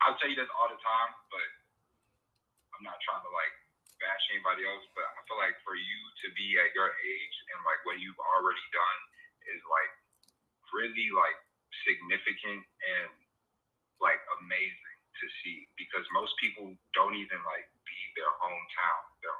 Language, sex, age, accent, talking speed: English, male, 30-49, American, 165 wpm